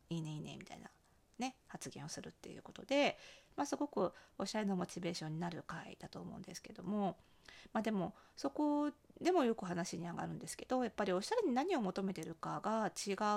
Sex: female